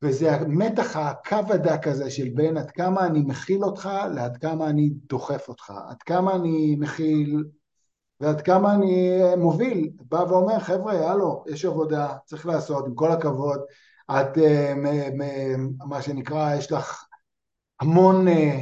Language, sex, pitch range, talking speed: Hebrew, male, 150-185 Hz, 135 wpm